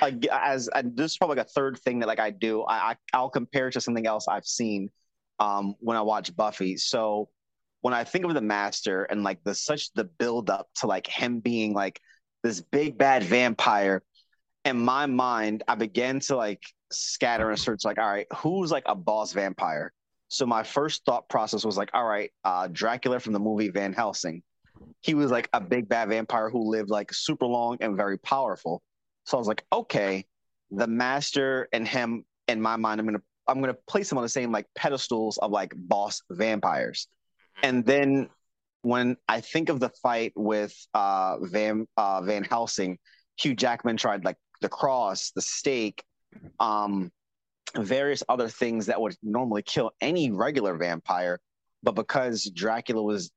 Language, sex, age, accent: English, male, 30-49, American